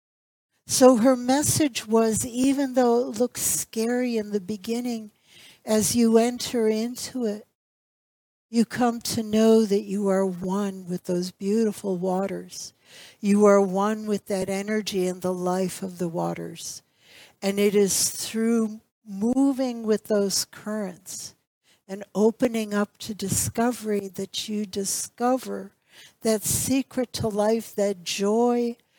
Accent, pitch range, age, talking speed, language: American, 185-225 Hz, 60-79, 130 wpm, English